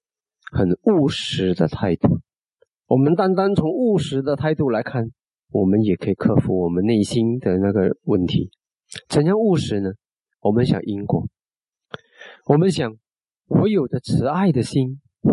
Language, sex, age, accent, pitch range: Chinese, male, 40-59, native, 125-200 Hz